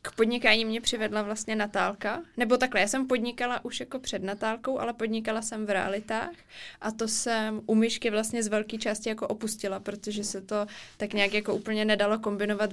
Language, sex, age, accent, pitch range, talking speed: Czech, female, 20-39, native, 200-220 Hz, 190 wpm